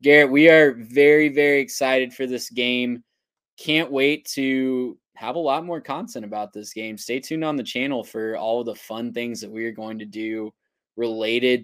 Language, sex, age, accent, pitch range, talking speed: English, male, 10-29, American, 120-145 Hz, 190 wpm